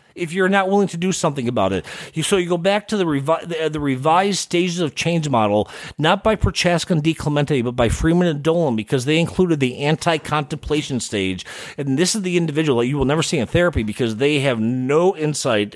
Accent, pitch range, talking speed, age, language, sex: American, 110-160 Hz, 205 wpm, 40-59, English, male